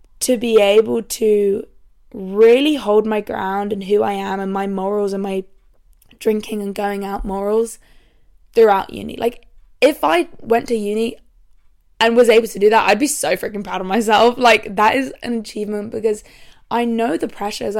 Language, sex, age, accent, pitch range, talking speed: English, female, 20-39, British, 205-235 Hz, 180 wpm